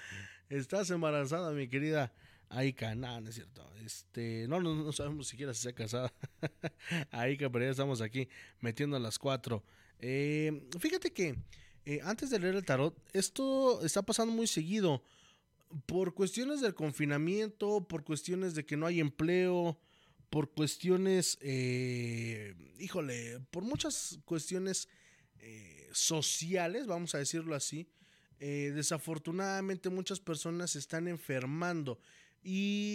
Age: 20-39